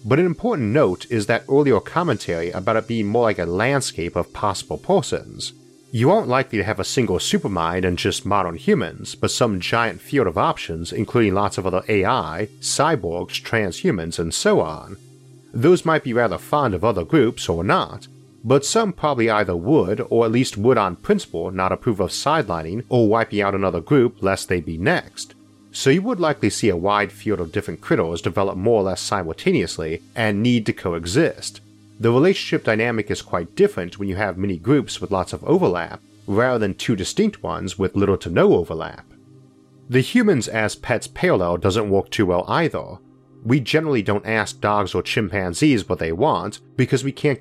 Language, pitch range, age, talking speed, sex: English, 90-125 Hz, 40-59, 185 wpm, male